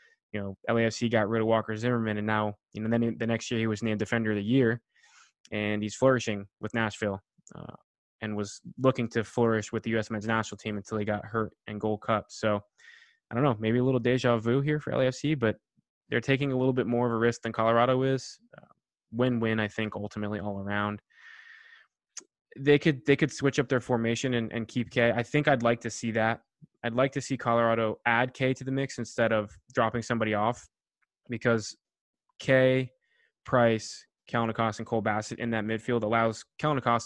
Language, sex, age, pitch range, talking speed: English, male, 20-39, 110-125 Hz, 200 wpm